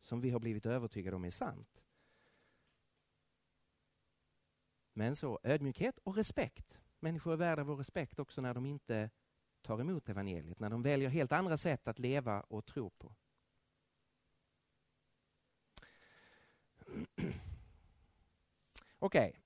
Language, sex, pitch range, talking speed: Danish, male, 110-160 Hz, 115 wpm